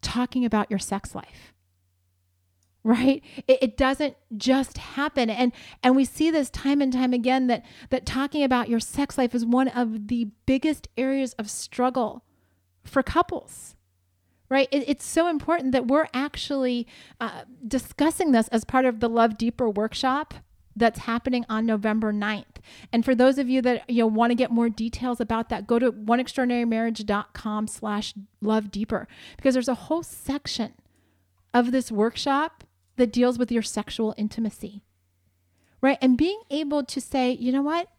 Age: 30-49